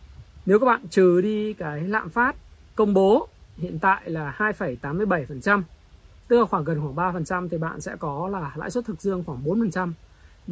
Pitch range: 160-210 Hz